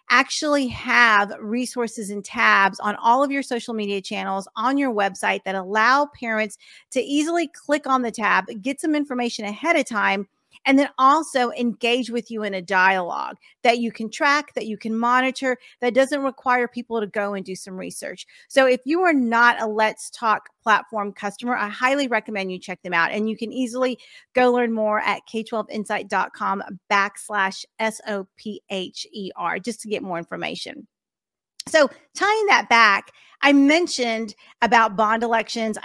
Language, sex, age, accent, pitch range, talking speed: English, female, 40-59, American, 210-260 Hz, 165 wpm